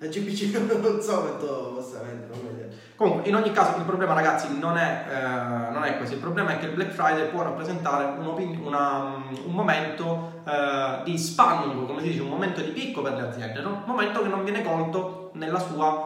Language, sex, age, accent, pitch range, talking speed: Italian, male, 20-39, native, 130-180 Hz, 190 wpm